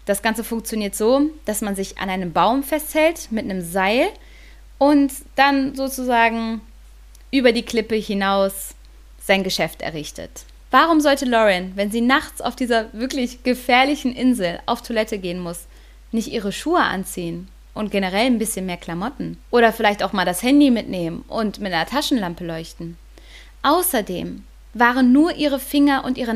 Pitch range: 200-255 Hz